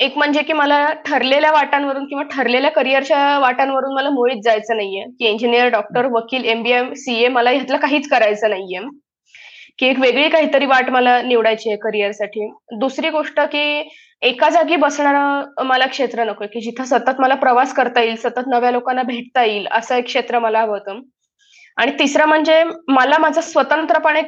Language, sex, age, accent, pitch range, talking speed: Marathi, female, 20-39, native, 245-295 Hz, 165 wpm